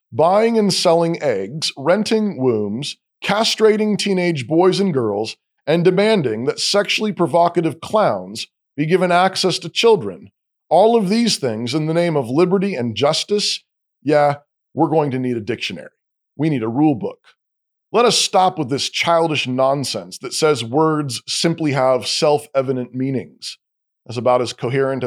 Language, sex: English, male